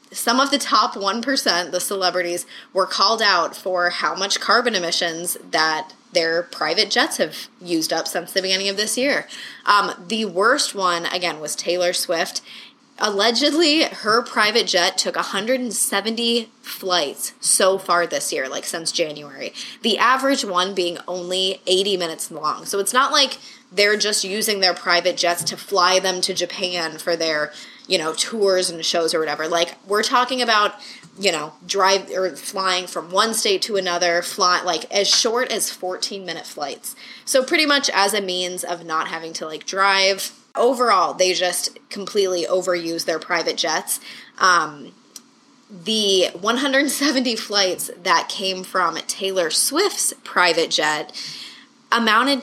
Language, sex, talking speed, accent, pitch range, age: English, female, 155 wpm, American, 175-235 Hz, 20-39